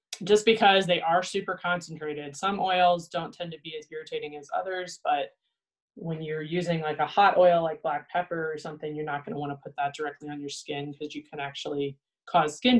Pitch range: 150-195 Hz